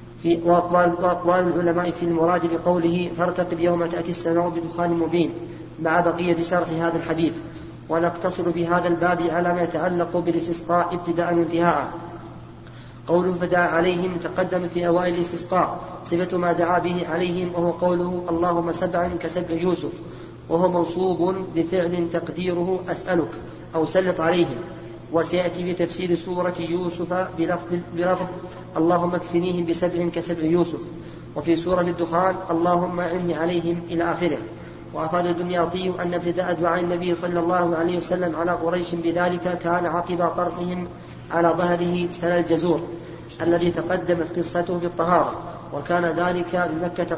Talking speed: 125 wpm